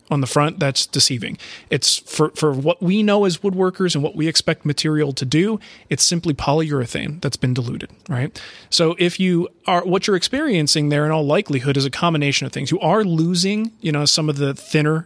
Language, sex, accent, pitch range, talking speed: English, male, American, 140-175 Hz, 205 wpm